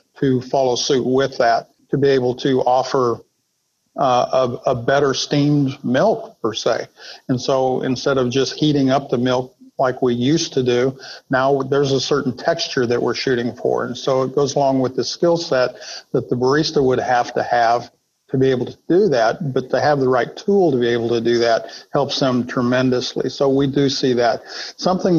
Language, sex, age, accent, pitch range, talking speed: English, male, 50-69, American, 130-145 Hz, 200 wpm